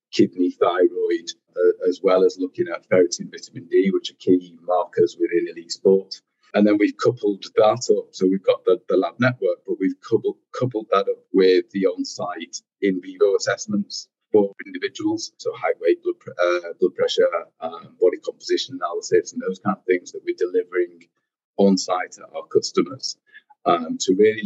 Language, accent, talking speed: English, British, 170 wpm